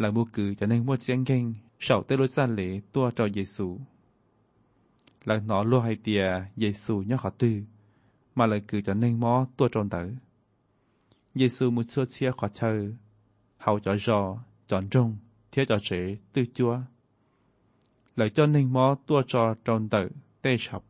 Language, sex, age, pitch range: Thai, male, 20-39, 105-130 Hz